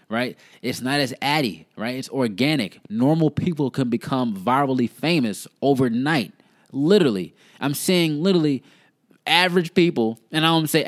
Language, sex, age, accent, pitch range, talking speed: English, male, 20-39, American, 125-160 Hz, 150 wpm